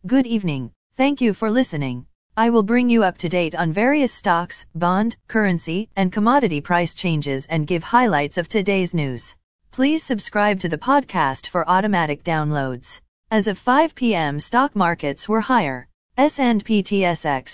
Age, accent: 40-59, American